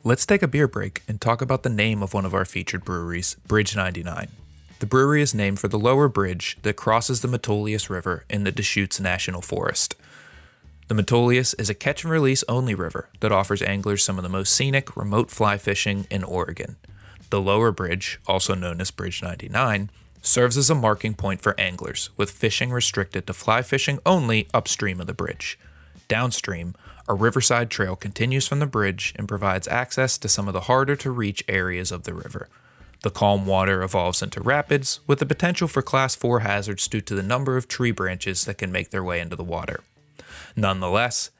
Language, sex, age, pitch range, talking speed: English, male, 20-39, 95-120 Hz, 195 wpm